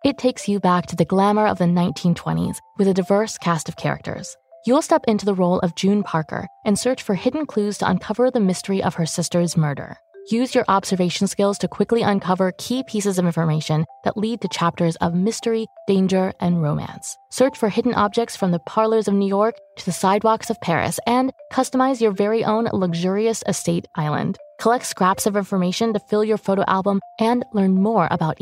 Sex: female